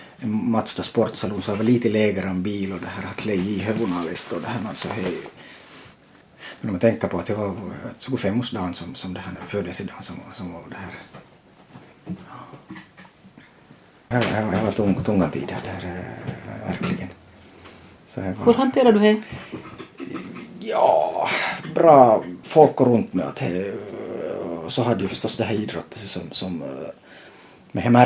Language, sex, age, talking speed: Swedish, male, 30-49, 150 wpm